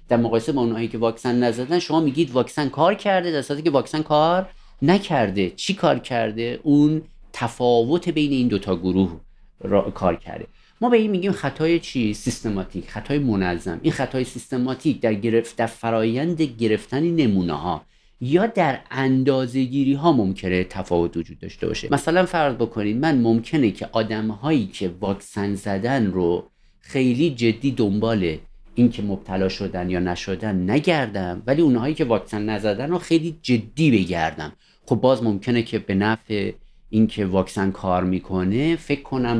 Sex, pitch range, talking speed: male, 100-140 Hz, 150 wpm